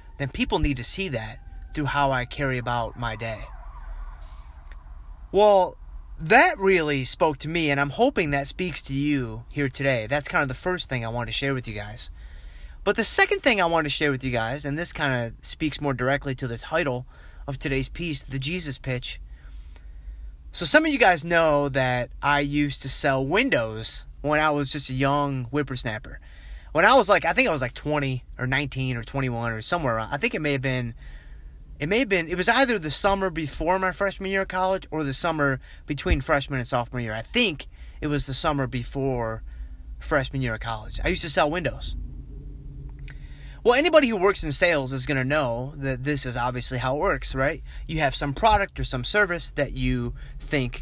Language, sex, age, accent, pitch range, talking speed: English, male, 30-49, American, 120-155 Hz, 210 wpm